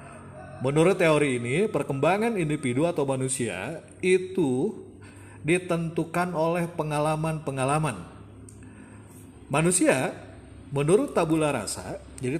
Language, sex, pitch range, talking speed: Indonesian, male, 125-165 Hz, 75 wpm